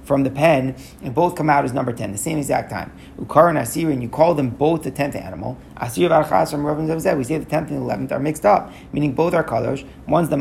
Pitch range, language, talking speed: 125-155 Hz, English, 250 wpm